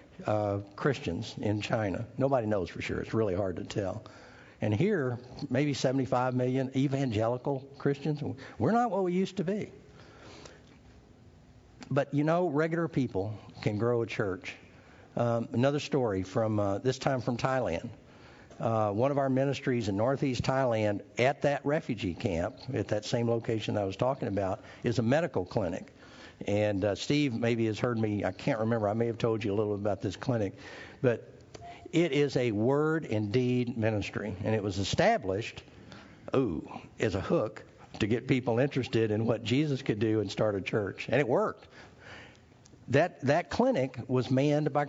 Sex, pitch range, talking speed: male, 110-140 Hz, 170 wpm